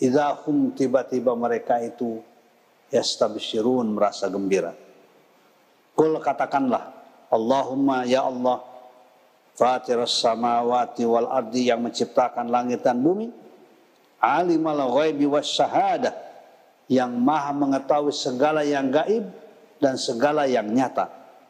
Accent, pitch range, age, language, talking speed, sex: native, 130-190 Hz, 50-69, Indonesian, 95 wpm, male